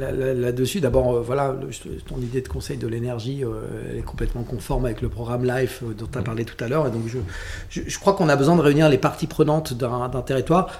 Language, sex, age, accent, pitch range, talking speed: French, male, 40-59, French, 125-160 Hz, 220 wpm